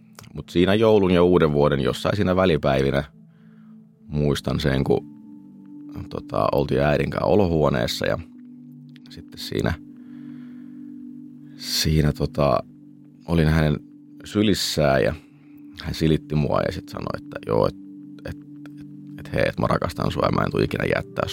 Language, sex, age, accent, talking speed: Finnish, male, 30-49, native, 135 wpm